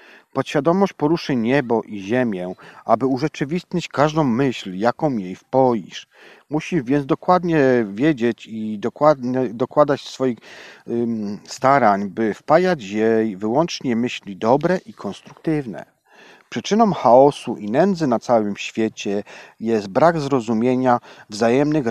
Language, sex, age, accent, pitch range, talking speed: Polish, male, 40-59, native, 110-150 Hz, 110 wpm